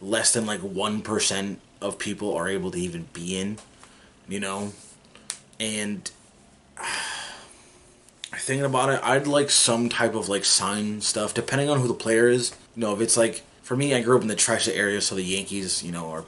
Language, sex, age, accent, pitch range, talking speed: English, male, 20-39, American, 95-115 Hz, 195 wpm